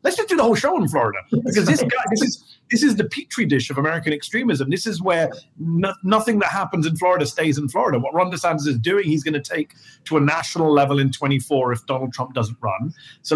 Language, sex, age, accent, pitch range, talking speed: English, male, 30-49, British, 140-175 Hz, 245 wpm